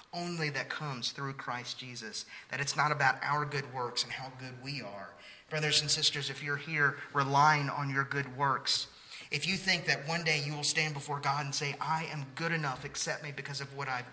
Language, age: English, 30-49